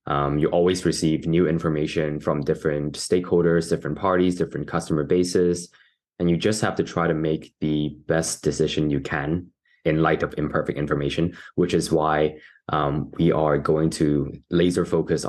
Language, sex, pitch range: English, male, 75-90 Hz